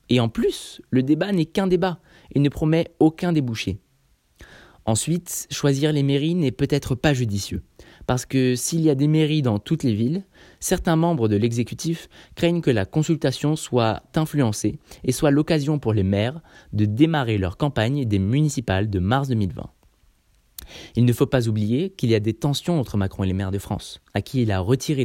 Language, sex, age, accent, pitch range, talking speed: French, male, 20-39, French, 105-150 Hz, 190 wpm